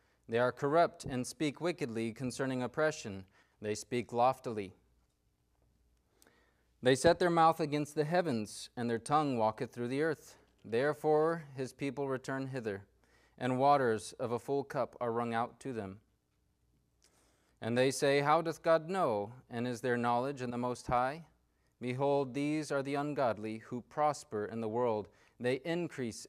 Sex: male